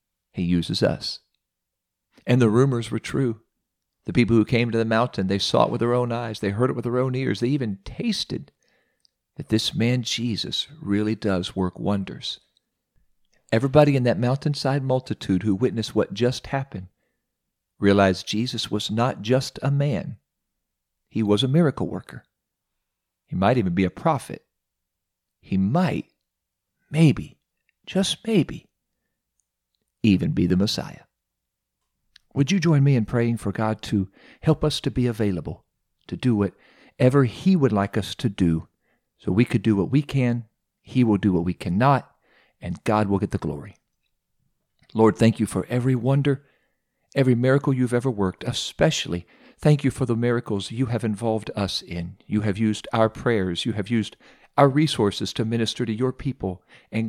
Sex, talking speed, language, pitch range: male, 165 wpm, English, 100-130 Hz